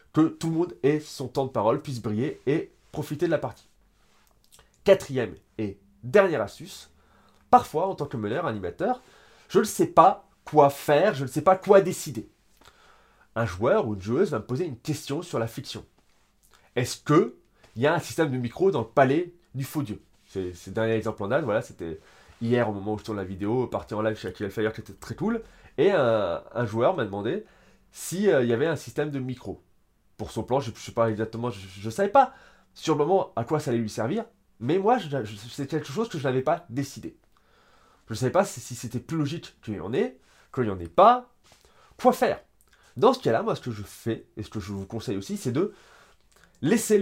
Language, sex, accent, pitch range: French, male, French, 110-165 Hz